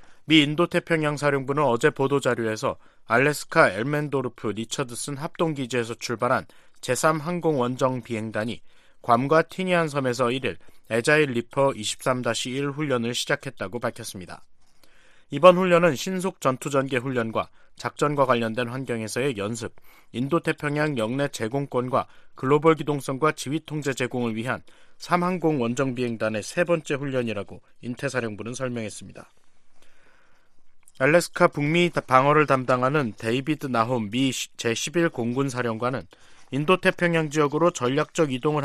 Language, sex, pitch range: Korean, male, 120-155 Hz